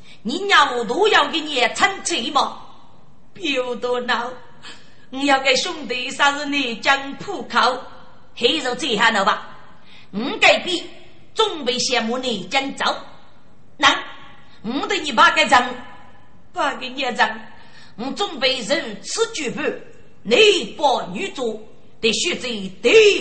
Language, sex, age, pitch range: Chinese, female, 40-59, 245-355 Hz